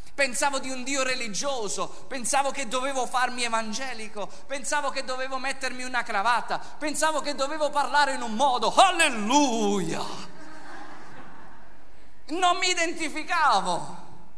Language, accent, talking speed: Italian, native, 115 wpm